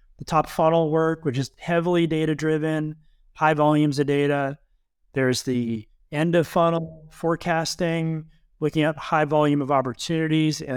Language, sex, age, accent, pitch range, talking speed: English, male, 30-49, American, 135-170 Hz, 140 wpm